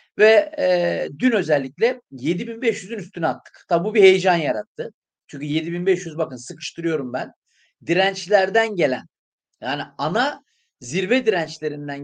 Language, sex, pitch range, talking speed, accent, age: Turkish, male, 155-240 Hz, 115 wpm, native, 40-59